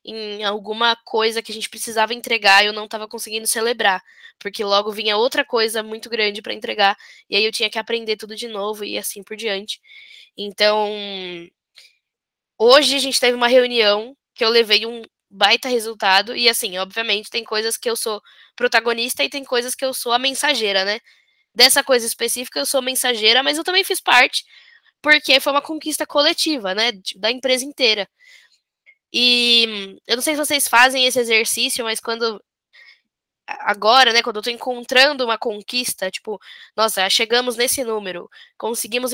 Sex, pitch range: female, 215-255 Hz